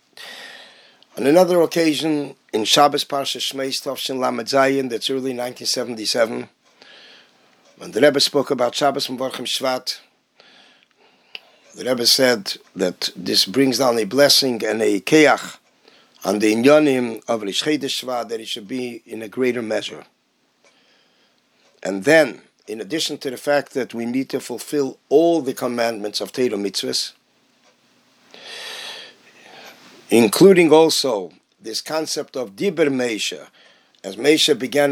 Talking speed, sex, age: 120 wpm, male, 50-69